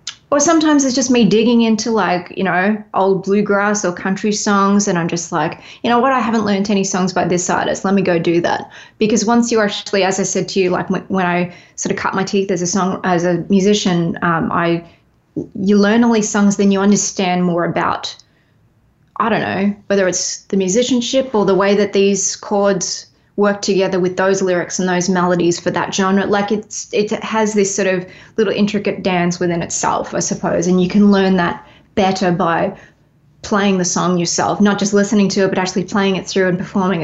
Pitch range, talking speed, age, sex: 180-205 Hz, 215 wpm, 20-39, female